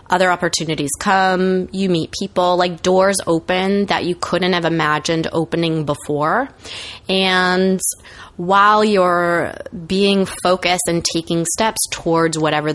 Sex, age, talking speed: female, 20-39, 120 wpm